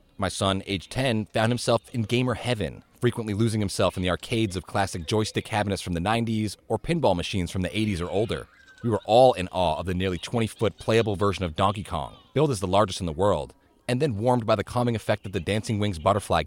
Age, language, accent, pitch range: 30-49, English, American, 90-115 Hz